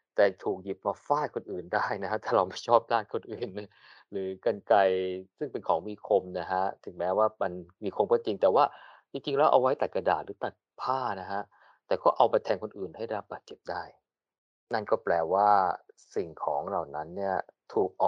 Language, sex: Thai, male